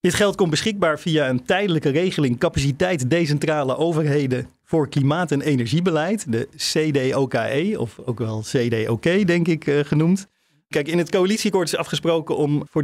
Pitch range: 130-155 Hz